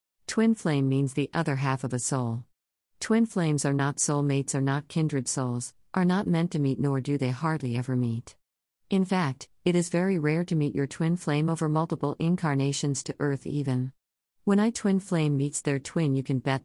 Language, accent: English, American